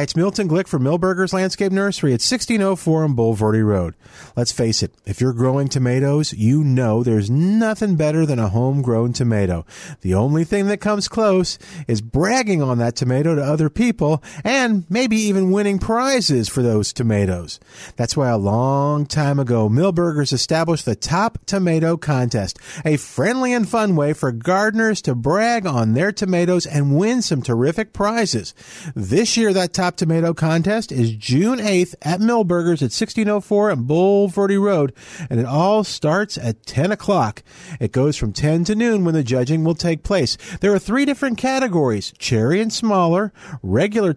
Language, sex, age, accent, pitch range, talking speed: English, male, 50-69, American, 130-200 Hz, 170 wpm